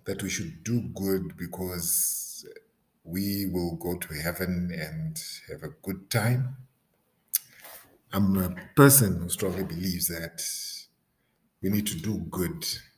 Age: 50-69